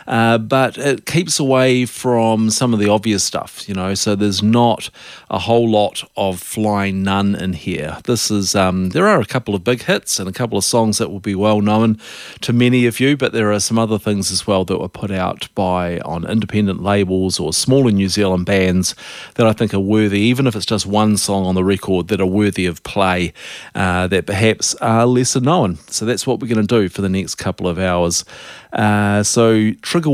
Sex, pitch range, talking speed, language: male, 95-115 Hz, 215 wpm, English